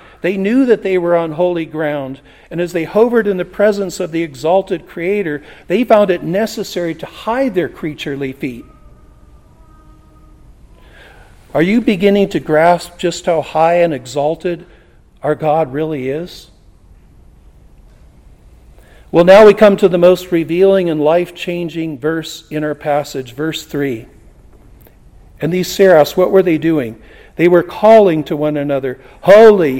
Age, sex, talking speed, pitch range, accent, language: 50-69, male, 145 wpm, 150-195 Hz, American, English